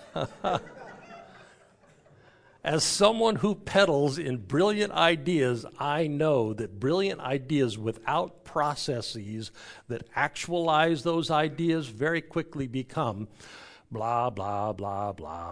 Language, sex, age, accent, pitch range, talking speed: English, male, 60-79, American, 110-155 Hz, 95 wpm